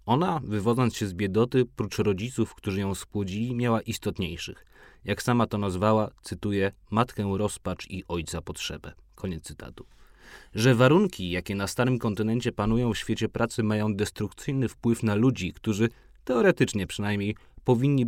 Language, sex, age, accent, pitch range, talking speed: Polish, male, 30-49, native, 95-120 Hz, 145 wpm